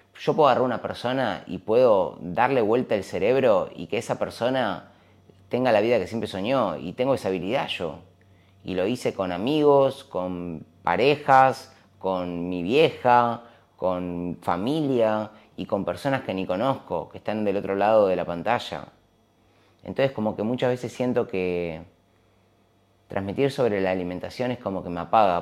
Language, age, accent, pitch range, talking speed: Spanish, 30-49, Argentinian, 95-115 Hz, 160 wpm